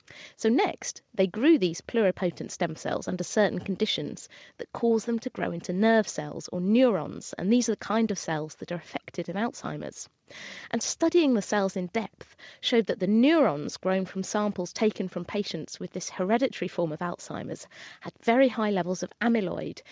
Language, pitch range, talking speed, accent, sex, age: English, 185-240 Hz, 185 wpm, British, female, 30-49